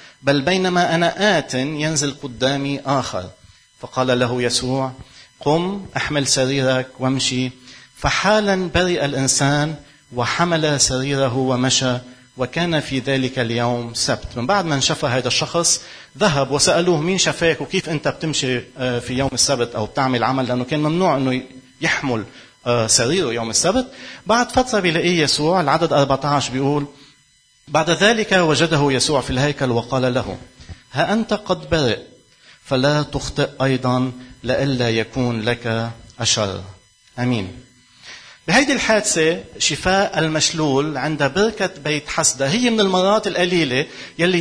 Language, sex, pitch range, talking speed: Arabic, male, 130-175 Hz, 125 wpm